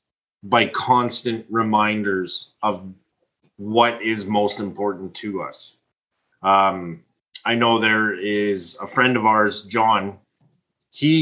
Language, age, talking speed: English, 20-39, 110 wpm